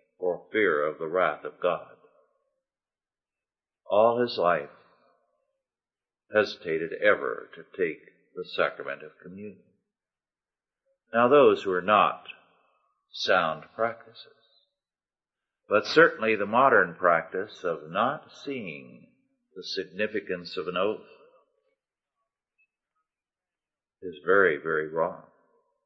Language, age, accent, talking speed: English, 50-69, American, 95 wpm